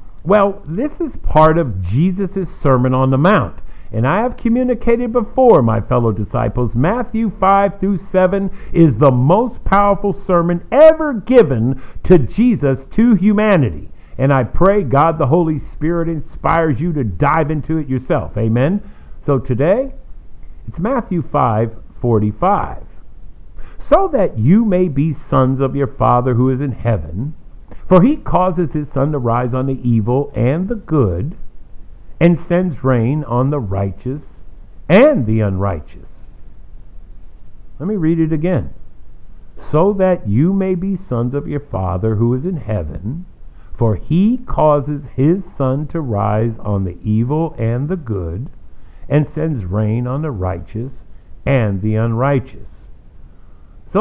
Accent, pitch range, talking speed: American, 110-180 Hz, 145 wpm